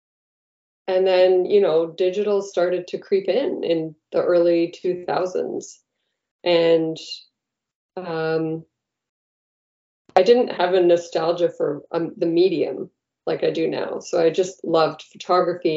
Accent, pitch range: American, 165-200 Hz